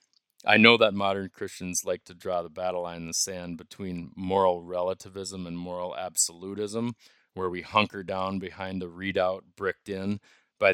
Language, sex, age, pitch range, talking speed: English, male, 30-49, 90-100 Hz, 170 wpm